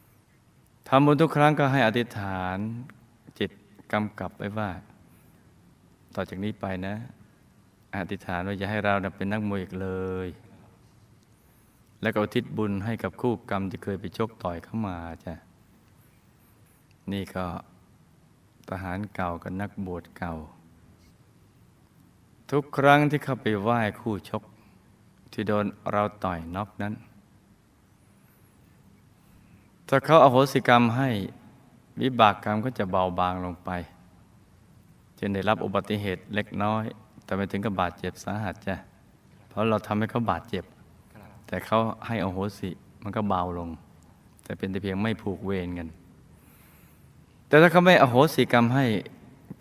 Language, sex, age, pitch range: Thai, male, 20-39, 95-110 Hz